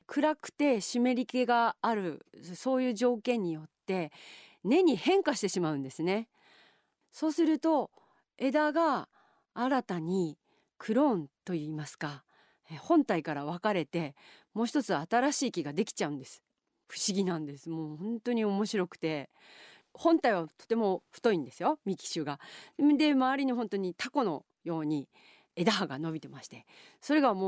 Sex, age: female, 40-59